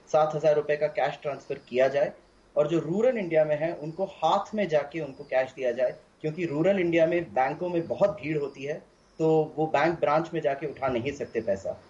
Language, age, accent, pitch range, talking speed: Hindi, 30-49, native, 150-180 Hz, 210 wpm